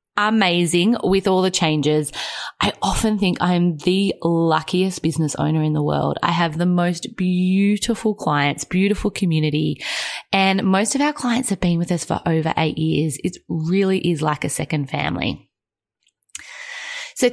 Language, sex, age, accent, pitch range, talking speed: English, female, 20-39, Australian, 165-215 Hz, 155 wpm